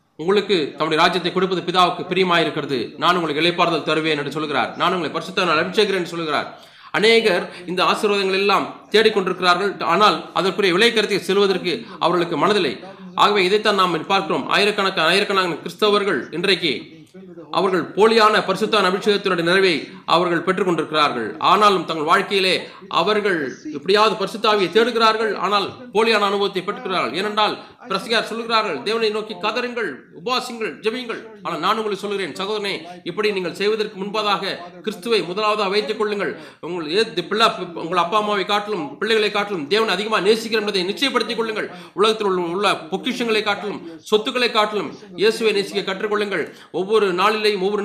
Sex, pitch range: male, 180-215 Hz